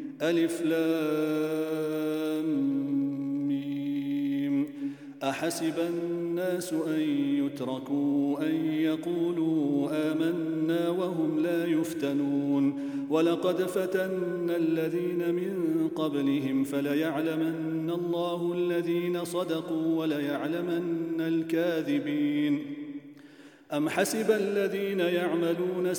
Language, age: English, 40-59